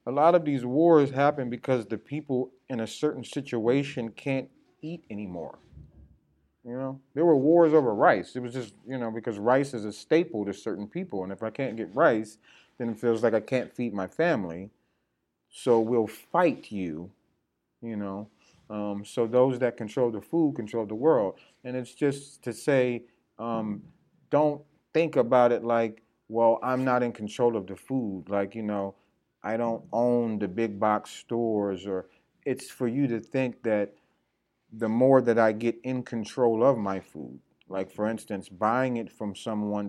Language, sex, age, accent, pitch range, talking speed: English, male, 30-49, American, 105-130 Hz, 180 wpm